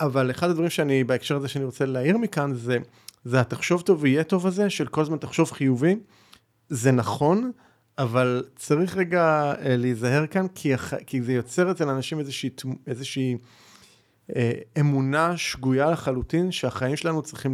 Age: 30-49